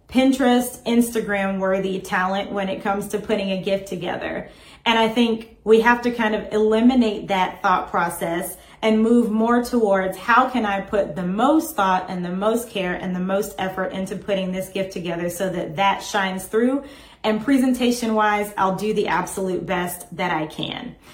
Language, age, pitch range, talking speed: English, 30-49, 195-235 Hz, 180 wpm